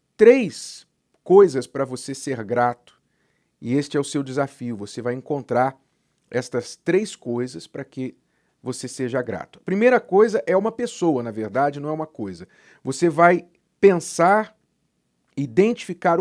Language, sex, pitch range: Portuguese, male, 130-195 Hz